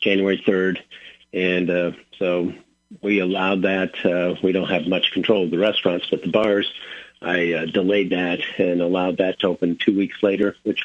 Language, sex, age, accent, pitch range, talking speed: English, male, 50-69, American, 85-95 Hz, 185 wpm